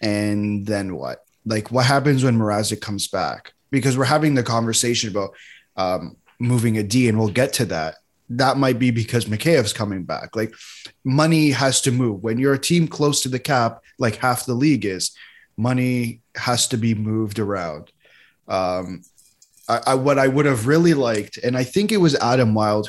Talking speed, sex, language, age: 185 wpm, male, English, 20-39